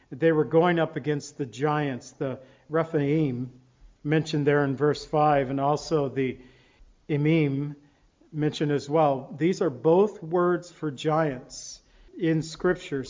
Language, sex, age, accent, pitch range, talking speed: English, male, 50-69, American, 145-175 Hz, 135 wpm